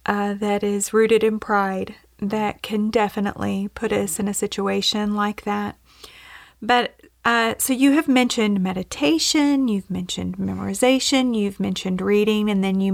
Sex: female